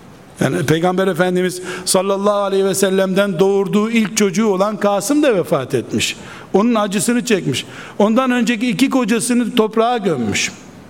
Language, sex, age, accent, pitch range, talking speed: Turkish, male, 60-79, native, 195-225 Hz, 130 wpm